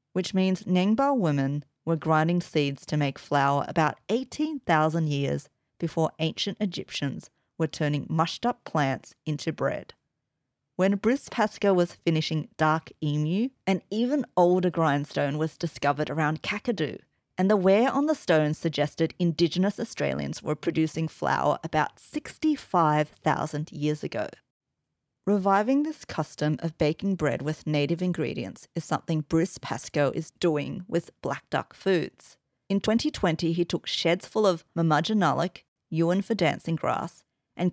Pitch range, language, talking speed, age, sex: 150-190 Hz, English, 135 wpm, 30-49, female